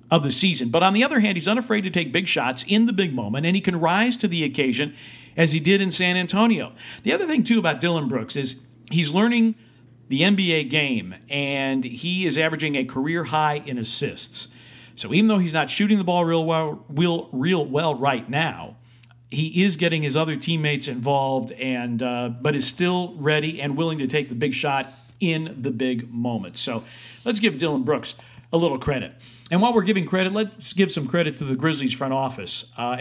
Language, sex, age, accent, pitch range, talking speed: English, male, 50-69, American, 130-170 Hz, 210 wpm